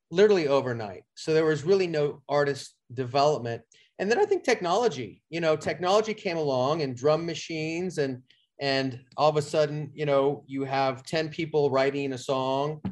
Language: English